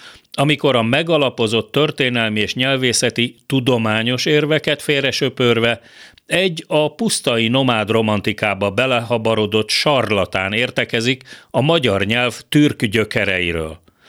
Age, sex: 40-59, male